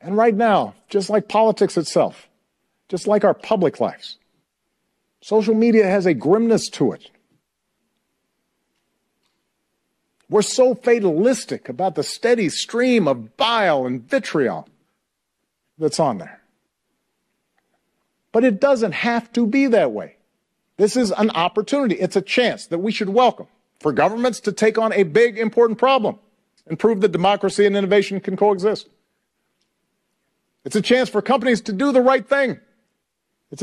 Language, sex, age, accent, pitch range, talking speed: English, male, 50-69, American, 200-240 Hz, 145 wpm